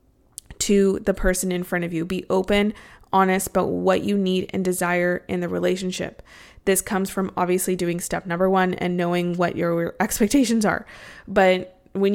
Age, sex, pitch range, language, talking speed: 20-39, female, 185-215 Hz, English, 175 wpm